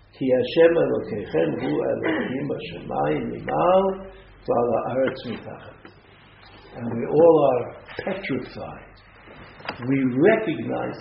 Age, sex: 60-79, male